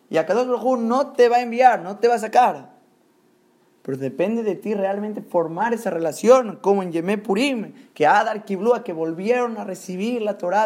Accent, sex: Mexican, male